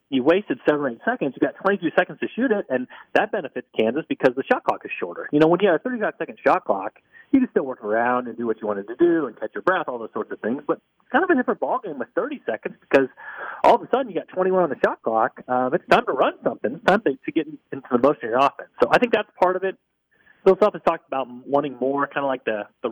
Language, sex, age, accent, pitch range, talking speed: English, male, 30-49, American, 120-175 Hz, 295 wpm